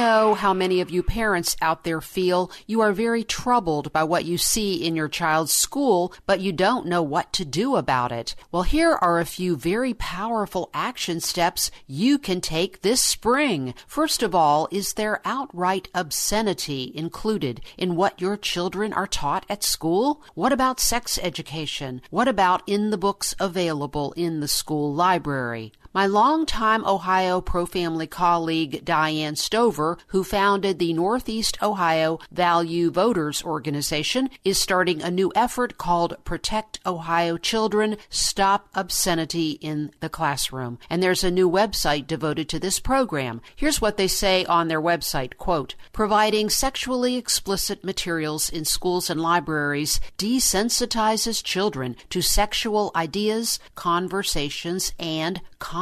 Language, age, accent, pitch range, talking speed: English, 50-69, American, 160-215 Hz, 145 wpm